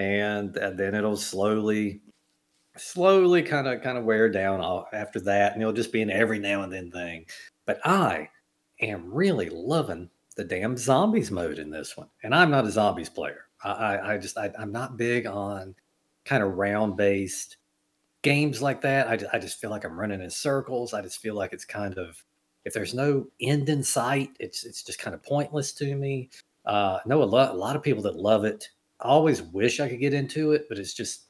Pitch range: 100-130 Hz